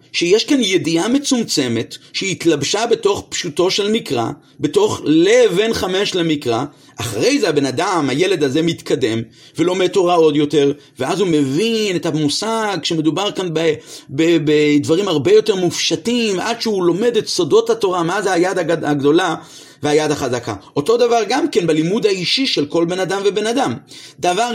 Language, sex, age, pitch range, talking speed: Hebrew, male, 40-59, 155-210 Hz, 155 wpm